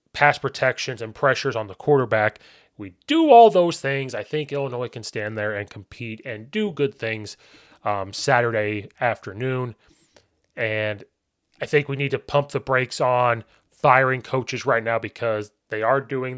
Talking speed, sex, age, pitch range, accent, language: 165 wpm, male, 20-39, 110-140 Hz, American, English